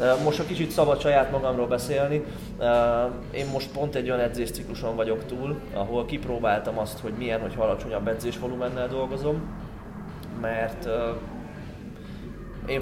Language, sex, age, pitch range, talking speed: Hungarian, male, 20-39, 115-140 Hz, 120 wpm